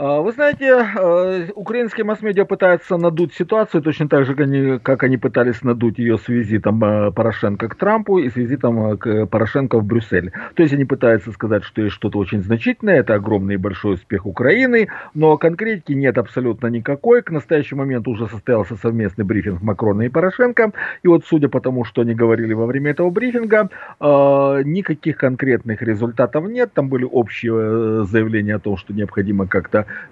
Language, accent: Russian, native